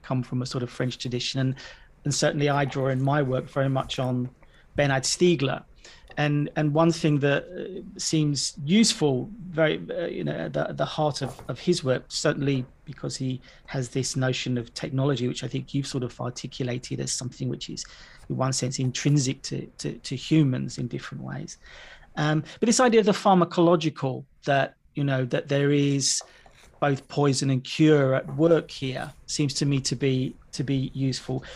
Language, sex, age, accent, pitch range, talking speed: English, male, 40-59, British, 130-155 Hz, 180 wpm